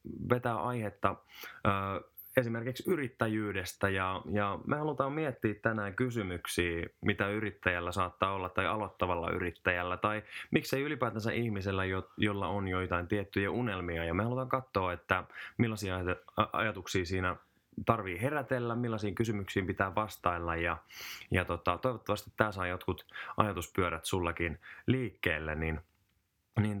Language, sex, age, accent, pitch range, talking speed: Finnish, male, 20-39, native, 90-110 Hz, 125 wpm